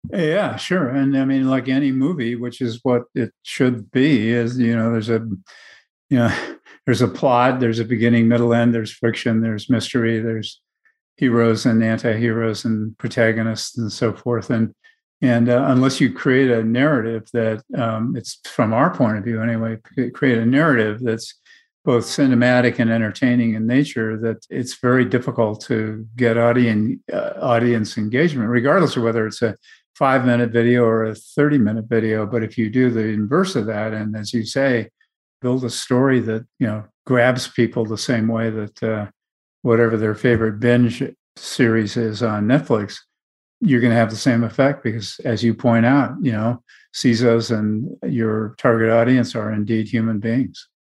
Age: 50-69